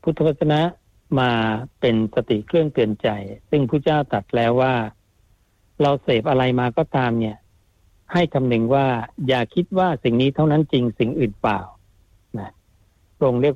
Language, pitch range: Thai, 110-150 Hz